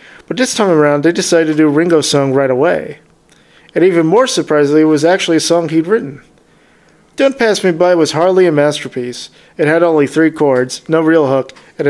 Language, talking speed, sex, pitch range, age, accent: English, 200 wpm, male, 145-170 Hz, 40-59, American